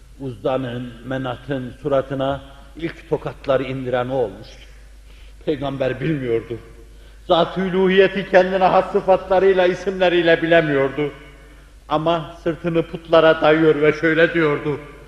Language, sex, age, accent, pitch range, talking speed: Turkish, male, 60-79, native, 115-180 Hz, 90 wpm